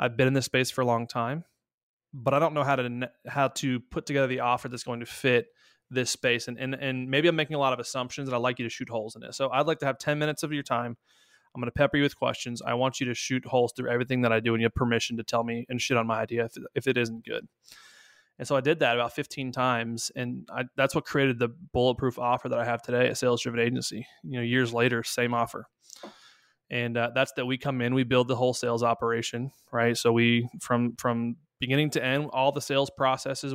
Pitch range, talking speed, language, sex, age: 120-135 Hz, 260 wpm, English, male, 20-39